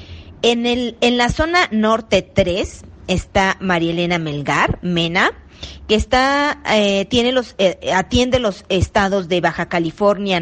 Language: Spanish